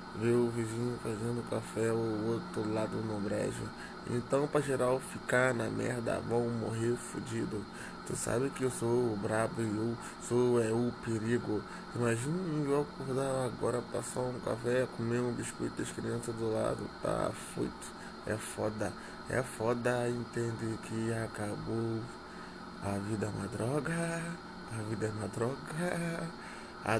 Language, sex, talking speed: English, male, 145 wpm